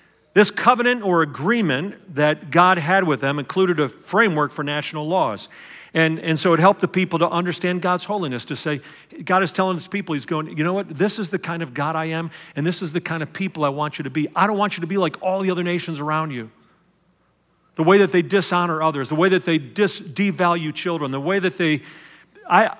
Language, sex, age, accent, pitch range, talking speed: English, male, 50-69, American, 155-190 Hz, 230 wpm